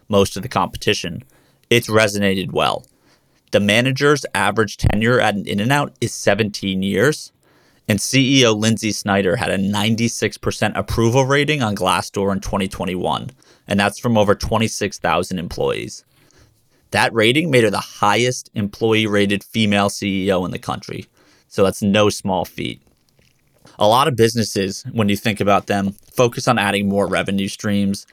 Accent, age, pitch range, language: American, 30-49, 100-115 Hz, English